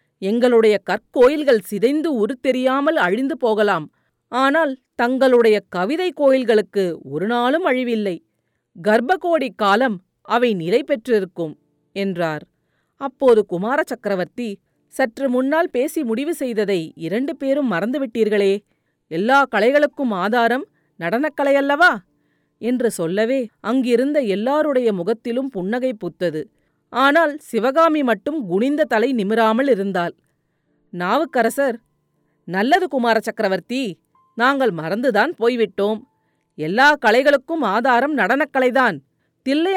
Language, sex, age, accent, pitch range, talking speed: Tamil, female, 40-59, native, 200-275 Hz, 90 wpm